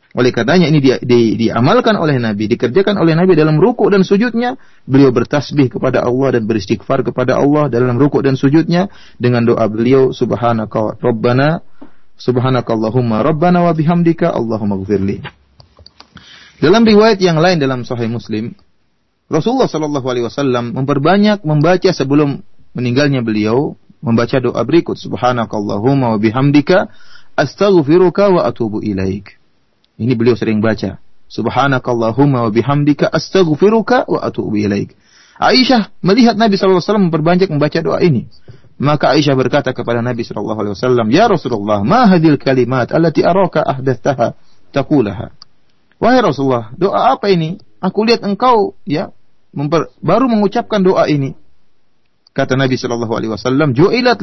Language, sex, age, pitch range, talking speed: Malay, male, 30-49, 120-180 Hz, 120 wpm